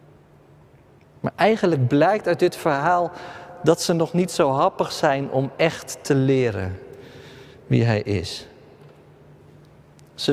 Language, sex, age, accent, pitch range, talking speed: Dutch, male, 50-69, Dutch, 145-200 Hz, 120 wpm